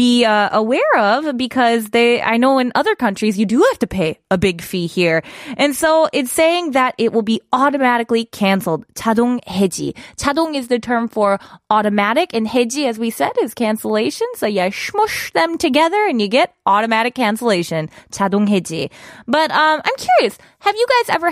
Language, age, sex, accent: Korean, 20-39, female, American